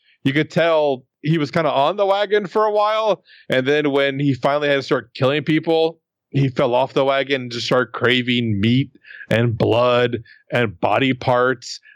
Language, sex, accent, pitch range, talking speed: English, male, American, 120-155 Hz, 190 wpm